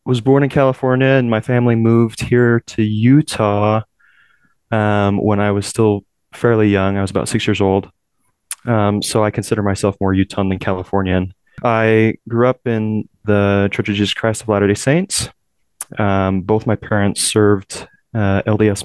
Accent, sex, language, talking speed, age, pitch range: American, male, English, 165 wpm, 20-39, 95-115 Hz